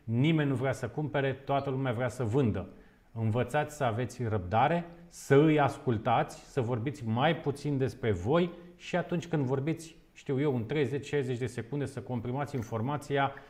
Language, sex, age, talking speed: Romanian, male, 40-59, 160 wpm